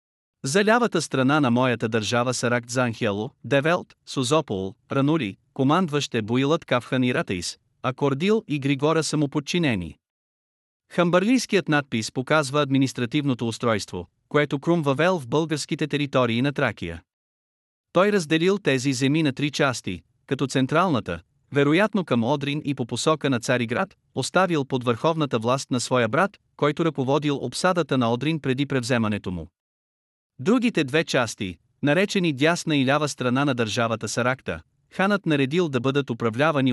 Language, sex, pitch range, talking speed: Bulgarian, male, 120-155 Hz, 135 wpm